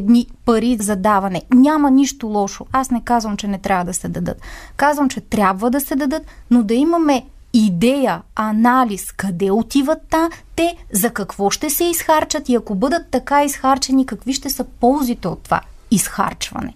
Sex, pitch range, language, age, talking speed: female, 225-285 Hz, Bulgarian, 30-49, 170 wpm